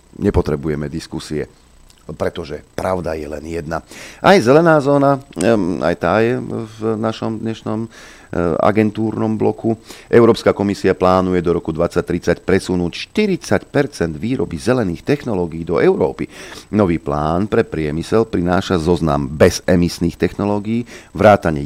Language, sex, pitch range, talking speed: Slovak, male, 85-110 Hz, 110 wpm